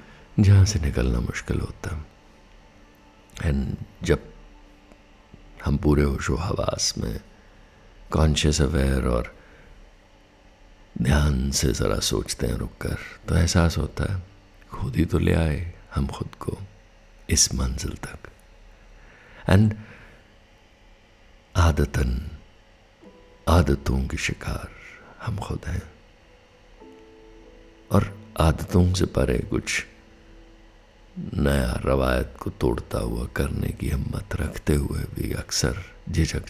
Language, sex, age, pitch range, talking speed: Hindi, male, 60-79, 75-105 Hz, 105 wpm